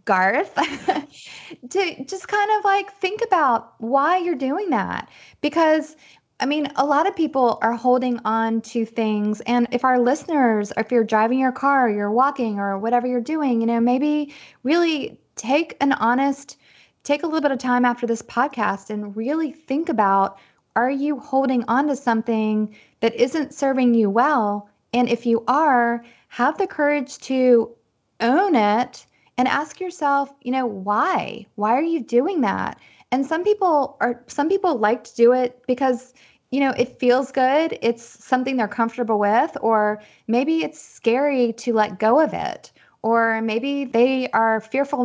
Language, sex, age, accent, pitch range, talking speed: English, female, 20-39, American, 225-280 Hz, 170 wpm